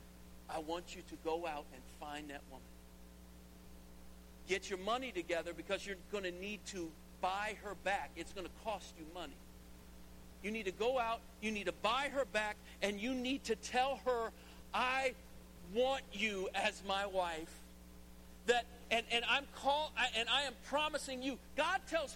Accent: American